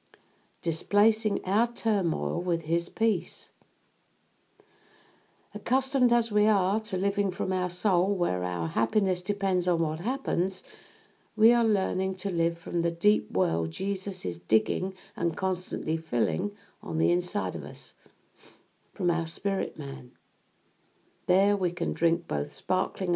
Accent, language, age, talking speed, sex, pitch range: British, English, 60-79, 135 wpm, female, 165-210 Hz